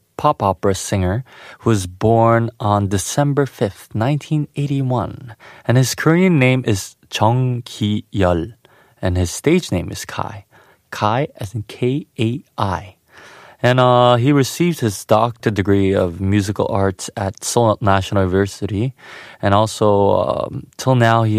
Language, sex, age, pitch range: Korean, male, 20-39, 100-125 Hz